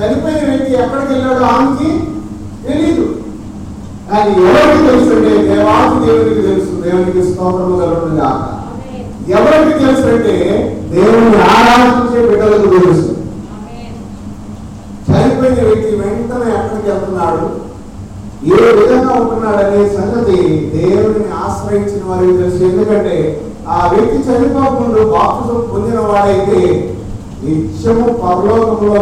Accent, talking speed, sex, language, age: native, 75 wpm, male, Telugu, 30-49